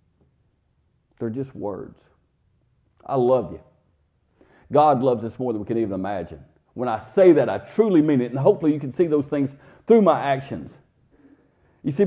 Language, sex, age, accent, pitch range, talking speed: English, male, 50-69, American, 120-165 Hz, 175 wpm